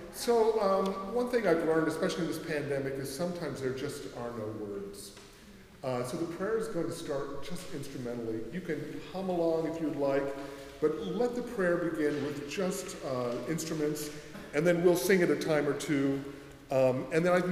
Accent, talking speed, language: American, 190 wpm, English